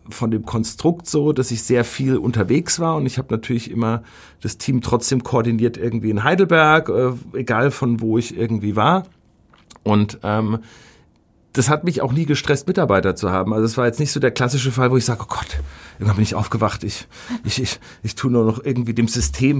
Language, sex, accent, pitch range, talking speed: German, male, German, 115-145 Hz, 210 wpm